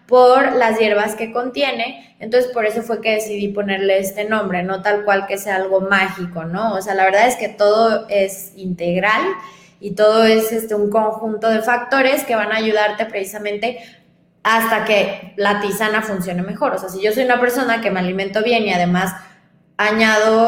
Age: 20-39